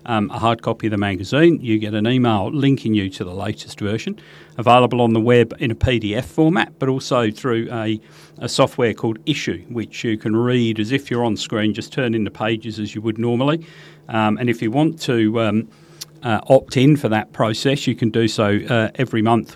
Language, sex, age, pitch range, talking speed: English, male, 40-59, 110-130 Hz, 220 wpm